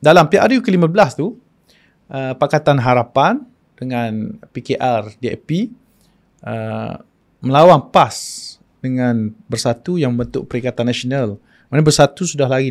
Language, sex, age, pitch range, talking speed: Malay, male, 20-39, 115-150 Hz, 100 wpm